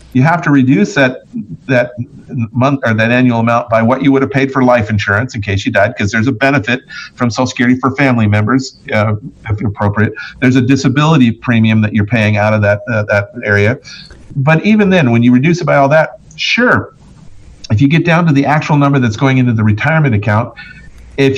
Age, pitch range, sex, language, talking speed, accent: 50-69, 115-145 Hz, male, English, 215 wpm, American